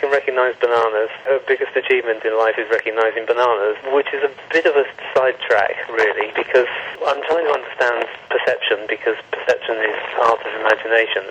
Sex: male